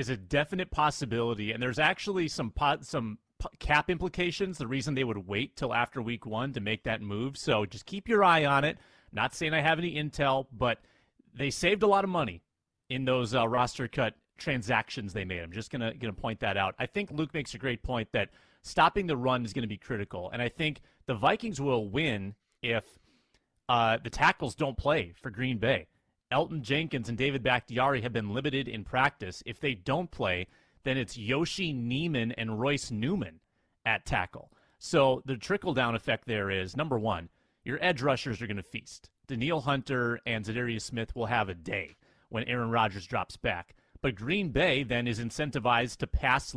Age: 30-49